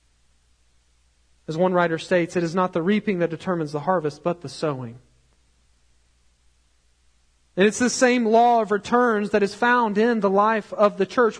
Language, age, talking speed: English, 40-59, 170 wpm